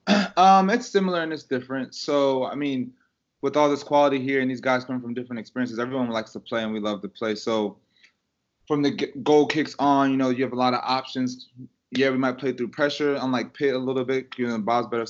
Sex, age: male, 20-39